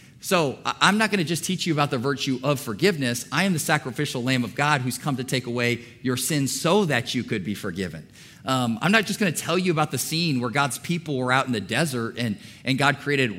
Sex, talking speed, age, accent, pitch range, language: male, 240 wpm, 40-59, American, 130-175 Hz, English